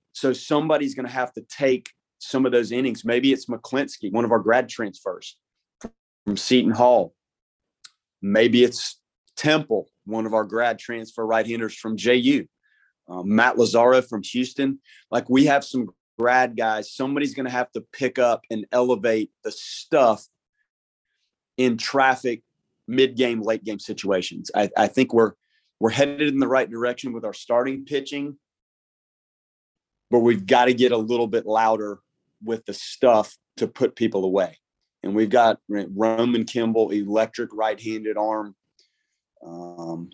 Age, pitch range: 30-49, 110-130 Hz